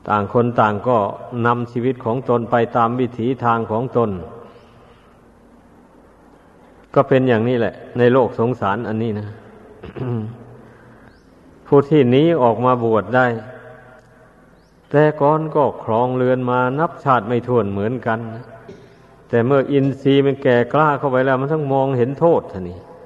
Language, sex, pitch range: Thai, male, 115-130 Hz